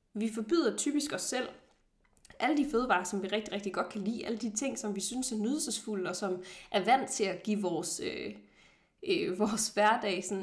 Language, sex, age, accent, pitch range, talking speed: Danish, female, 20-39, native, 200-260 Hz, 190 wpm